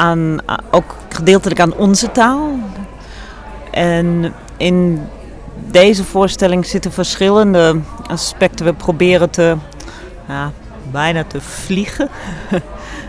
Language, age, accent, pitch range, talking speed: Dutch, 40-59, Dutch, 165-185 Hz, 90 wpm